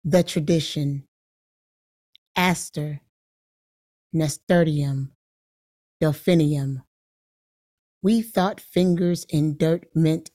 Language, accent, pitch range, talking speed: English, American, 145-175 Hz, 65 wpm